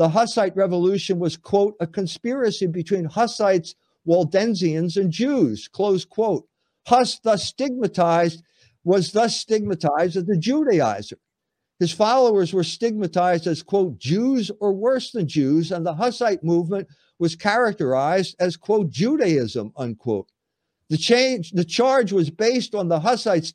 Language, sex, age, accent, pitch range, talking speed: English, male, 50-69, American, 155-210 Hz, 135 wpm